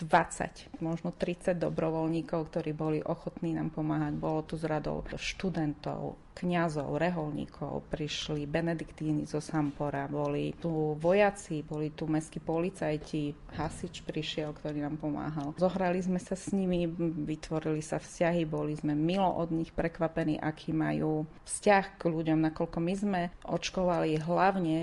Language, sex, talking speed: Slovak, female, 135 wpm